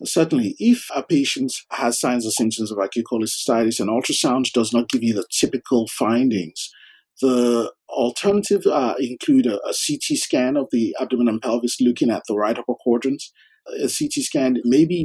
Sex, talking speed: male, 180 wpm